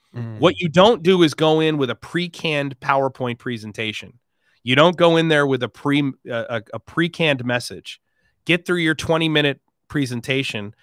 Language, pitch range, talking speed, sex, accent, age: English, 110-140 Hz, 165 wpm, male, American, 30-49